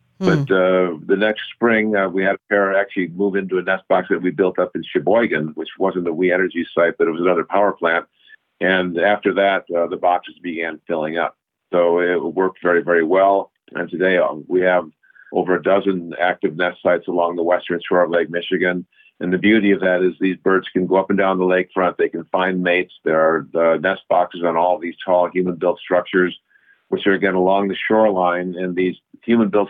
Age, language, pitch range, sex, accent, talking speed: 50-69, English, 90-95 Hz, male, American, 215 wpm